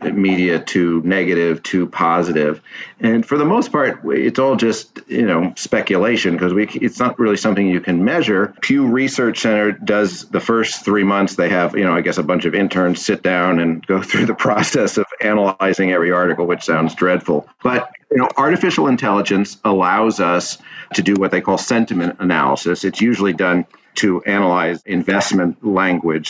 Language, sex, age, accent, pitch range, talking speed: English, male, 50-69, American, 85-105 Hz, 175 wpm